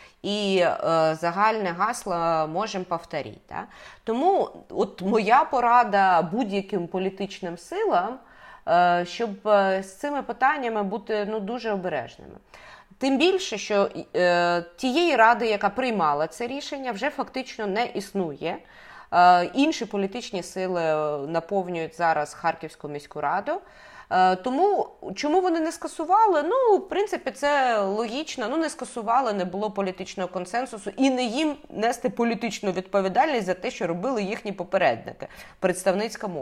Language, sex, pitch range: Ukrainian, female, 185-275 Hz